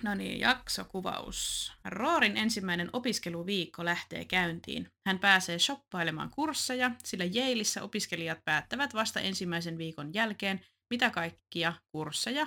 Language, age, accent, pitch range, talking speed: Finnish, 30-49, native, 165-215 Hz, 110 wpm